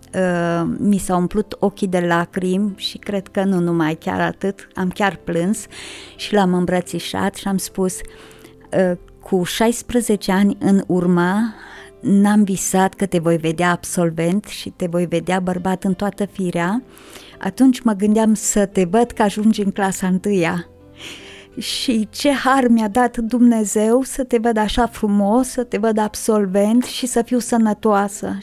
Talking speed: 150 wpm